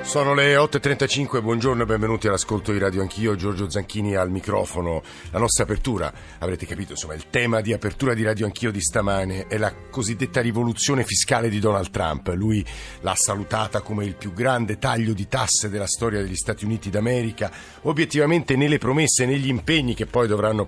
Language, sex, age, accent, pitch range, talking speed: Italian, male, 50-69, native, 105-130 Hz, 180 wpm